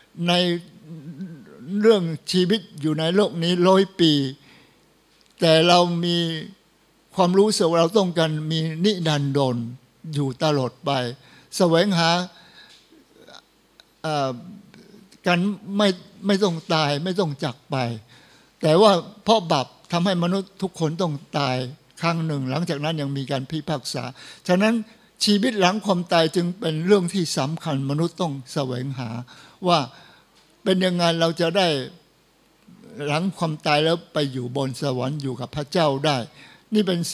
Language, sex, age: Thai, male, 60-79